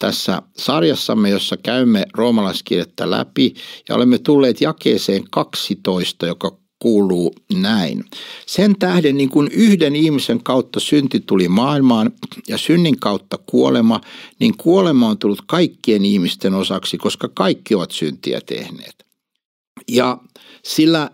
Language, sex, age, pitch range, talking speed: Finnish, male, 60-79, 115-195 Hz, 120 wpm